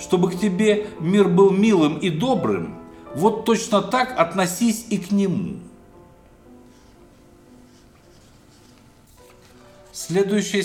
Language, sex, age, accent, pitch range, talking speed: Russian, male, 50-69, native, 155-200 Hz, 90 wpm